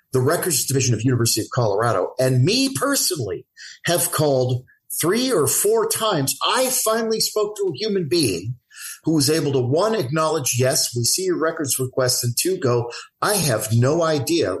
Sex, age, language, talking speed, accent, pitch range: male, 50-69, English, 175 wpm, American, 125-190 Hz